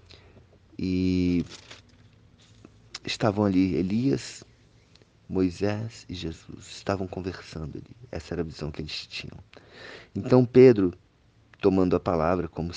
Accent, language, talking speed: Brazilian, Portuguese, 110 wpm